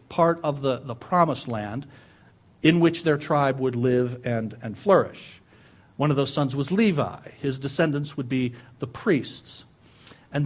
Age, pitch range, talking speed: 50-69, 120-170 Hz, 160 wpm